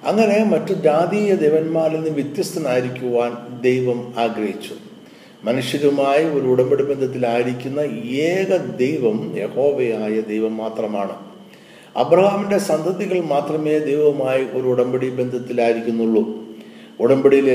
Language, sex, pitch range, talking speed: Malayalam, male, 120-170 Hz, 85 wpm